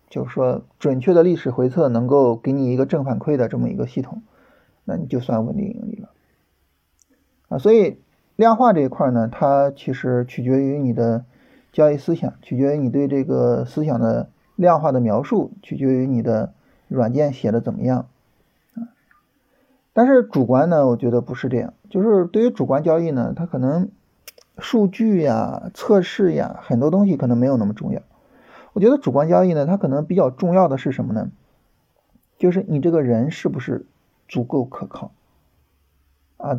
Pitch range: 120-180 Hz